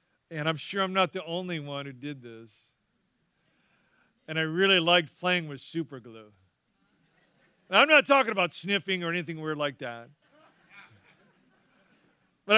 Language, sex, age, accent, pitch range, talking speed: English, male, 50-69, American, 165-240 Hz, 150 wpm